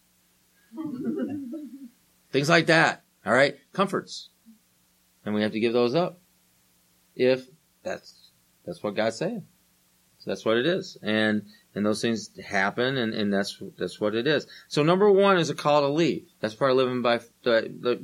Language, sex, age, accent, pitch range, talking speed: English, male, 30-49, American, 110-180 Hz, 165 wpm